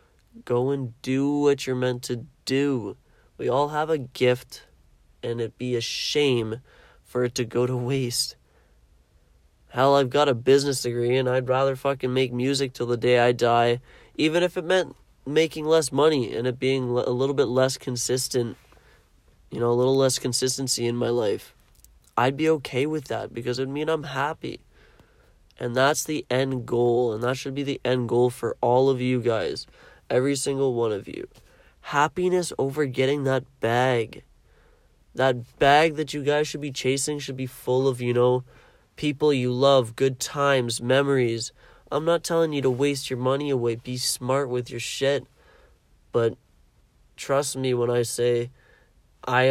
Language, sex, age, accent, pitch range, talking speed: English, male, 30-49, American, 120-140 Hz, 175 wpm